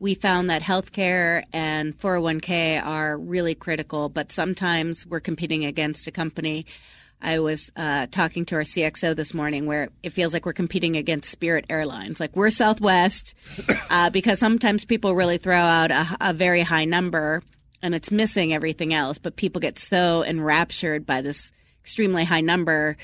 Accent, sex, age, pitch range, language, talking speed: American, female, 30-49, 155-180 Hz, English, 165 wpm